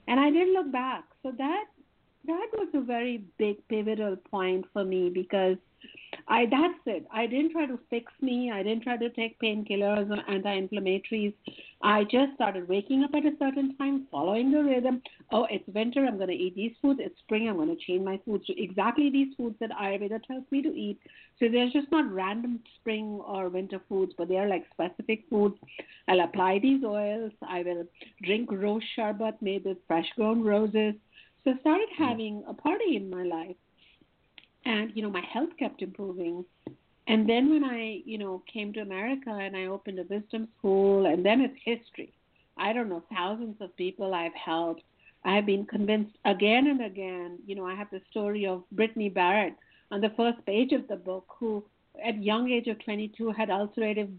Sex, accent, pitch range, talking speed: female, Indian, 195-245 Hz, 190 wpm